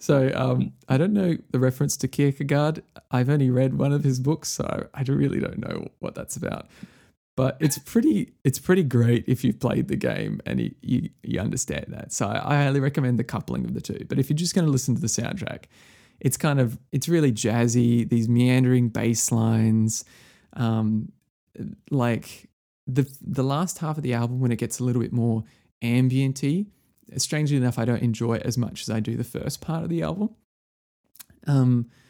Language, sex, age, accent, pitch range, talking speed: English, male, 20-39, Australian, 115-145 Hz, 195 wpm